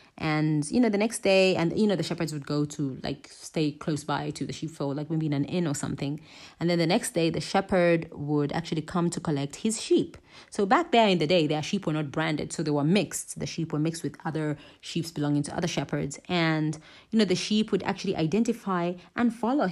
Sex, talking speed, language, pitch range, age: female, 235 wpm, English, 150-195 Hz, 30-49